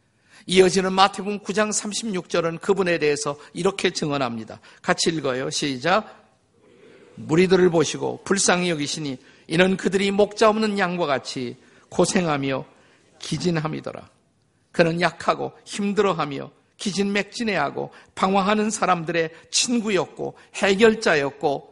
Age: 50-69